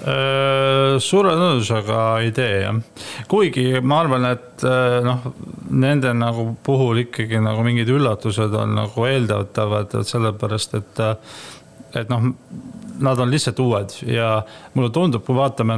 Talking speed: 120 wpm